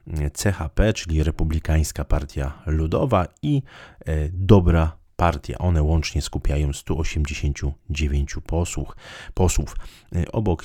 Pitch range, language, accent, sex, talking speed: 75-90 Hz, Polish, native, male, 80 wpm